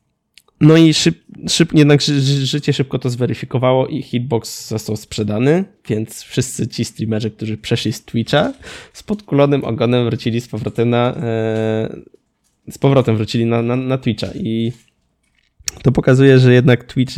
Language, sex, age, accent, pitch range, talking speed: Polish, male, 20-39, native, 115-130 Hz, 145 wpm